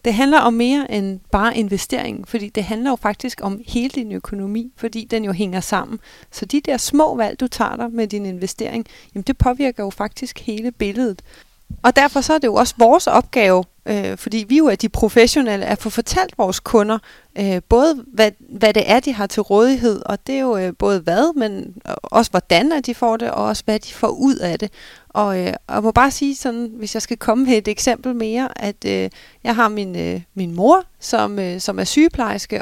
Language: Danish